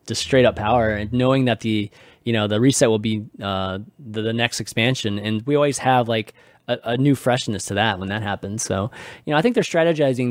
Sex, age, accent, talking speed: male, 20-39, American, 235 wpm